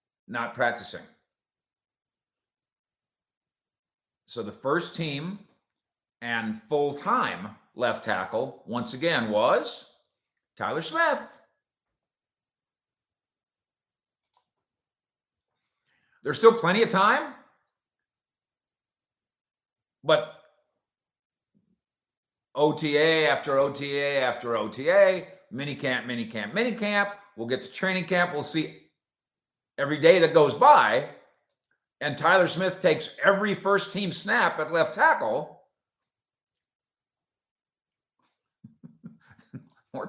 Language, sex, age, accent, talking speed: English, male, 50-69, American, 80 wpm